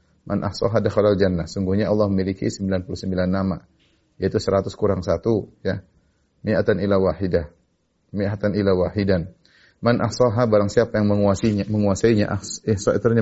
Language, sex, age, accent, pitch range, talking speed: Indonesian, male, 30-49, native, 95-105 Hz, 135 wpm